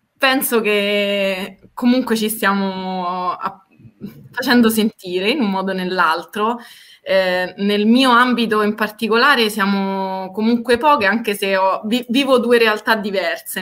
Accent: native